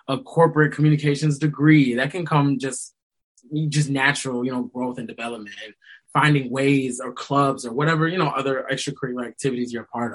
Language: English